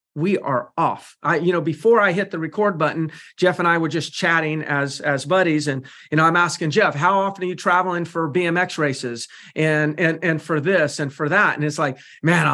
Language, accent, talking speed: English, American, 225 wpm